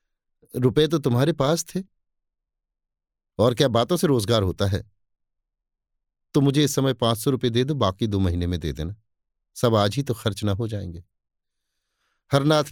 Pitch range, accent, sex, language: 95-125 Hz, native, male, Hindi